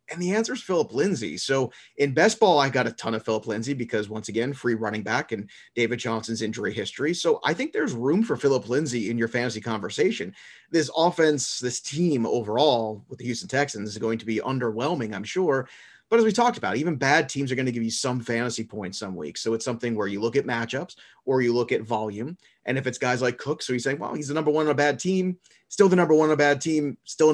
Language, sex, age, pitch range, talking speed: English, male, 30-49, 115-140 Hz, 250 wpm